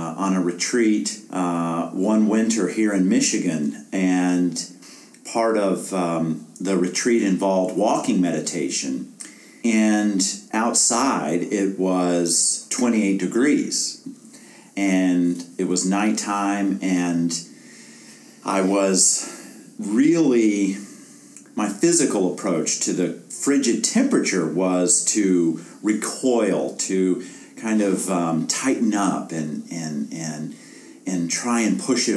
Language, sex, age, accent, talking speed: English, male, 50-69, American, 105 wpm